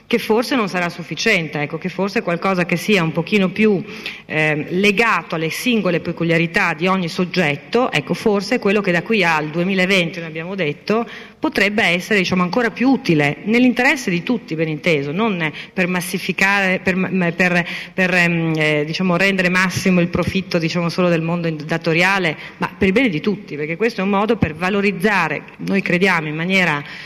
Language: Italian